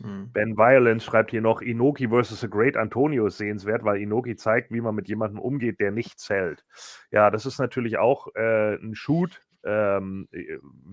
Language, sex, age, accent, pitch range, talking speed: German, male, 30-49, German, 95-115 Hz, 175 wpm